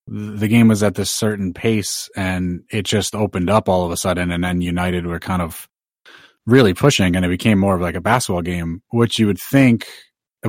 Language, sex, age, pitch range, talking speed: English, male, 30-49, 85-100 Hz, 215 wpm